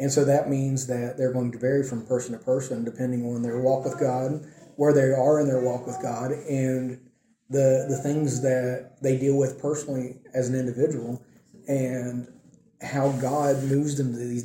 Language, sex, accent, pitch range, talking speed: English, male, American, 125-150 Hz, 190 wpm